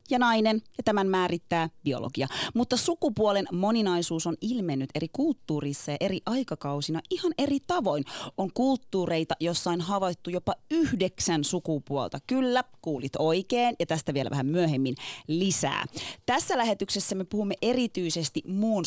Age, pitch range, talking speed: 30-49, 140-190 Hz, 130 wpm